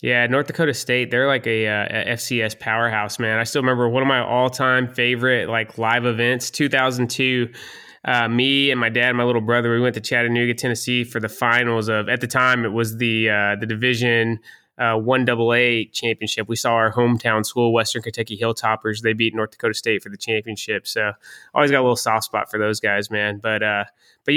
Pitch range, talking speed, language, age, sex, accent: 115-130 Hz, 205 wpm, English, 20-39, male, American